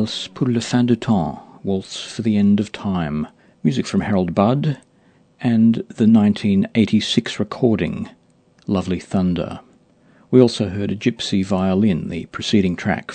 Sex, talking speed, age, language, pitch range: male, 135 wpm, 50-69, English, 90-115 Hz